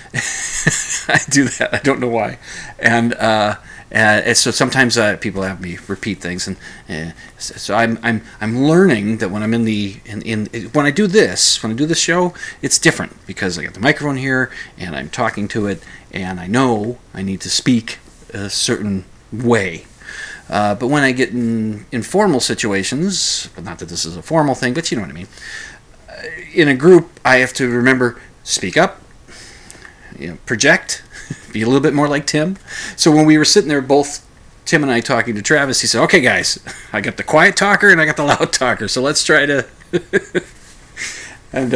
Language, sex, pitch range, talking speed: English, male, 105-140 Hz, 200 wpm